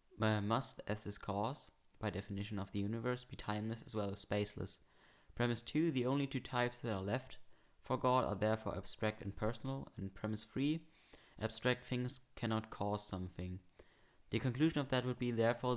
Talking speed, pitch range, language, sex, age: 175 wpm, 100-120 Hz, English, male, 20-39